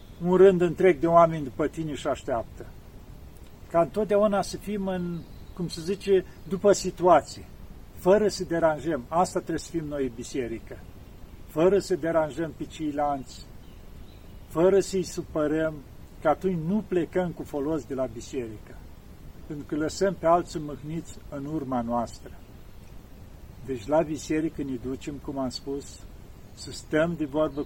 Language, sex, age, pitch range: Romanian, male, 50-69, 110-170 Hz